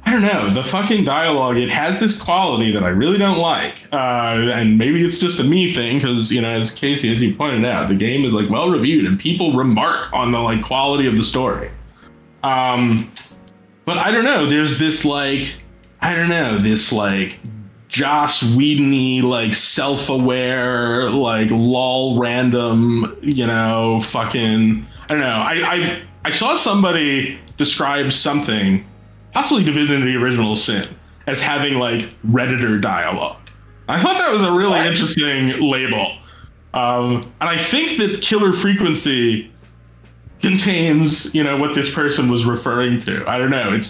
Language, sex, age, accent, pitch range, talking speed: English, male, 20-39, American, 115-155 Hz, 155 wpm